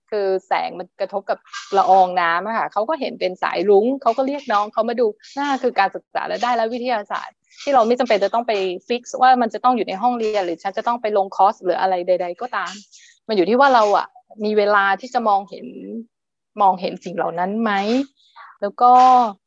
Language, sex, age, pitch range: Thai, female, 20-39, 190-245 Hz